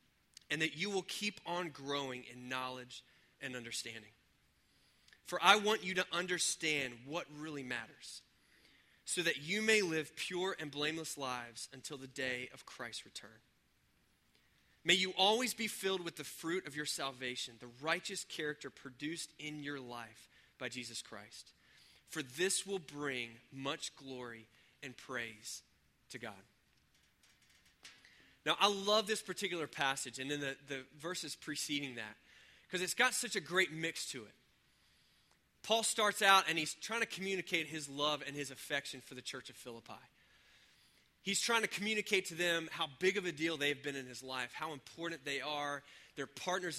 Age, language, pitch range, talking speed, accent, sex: 20-39, English, 130-180 Hz, 165 wpm, American, male